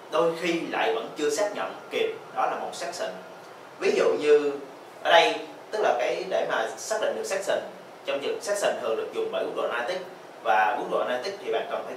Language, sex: Vietnamese, male